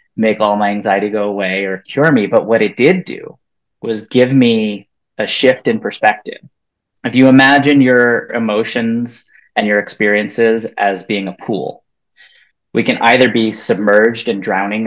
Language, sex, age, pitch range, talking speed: English, male, 20-39, 100-120 Hz, 160 wpm